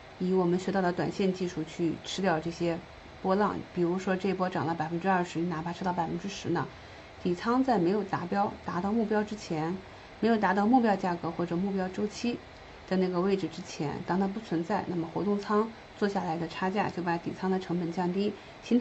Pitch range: 170-200 Hz